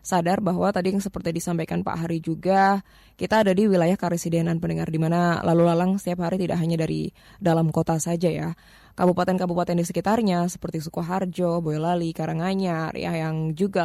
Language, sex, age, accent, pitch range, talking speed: Indonesian, female, 20-39, native, 165-195 Hz, 160 wpm